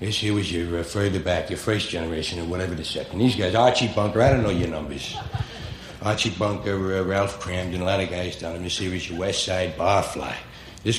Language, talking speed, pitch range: English, 215 wpm, 90-115 Hz